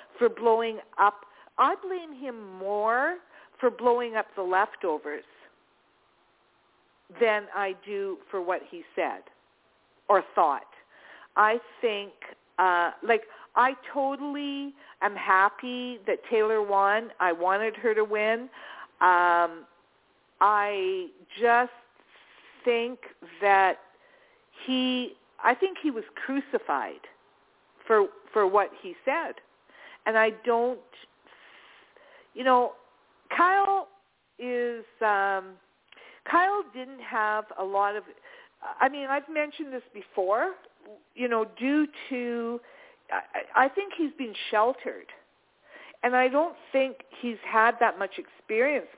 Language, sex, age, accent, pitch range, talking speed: English, female, 50-69, American, 215-320 Hz, 115 wpm